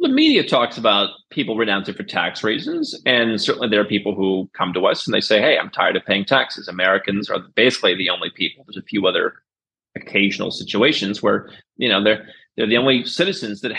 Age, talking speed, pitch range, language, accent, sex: 30-49, 210 wpm, 100-120 Hz, English, American, male